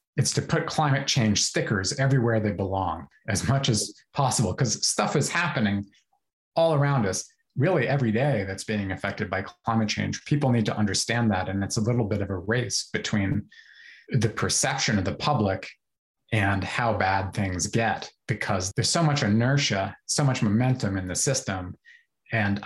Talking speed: 170 wpm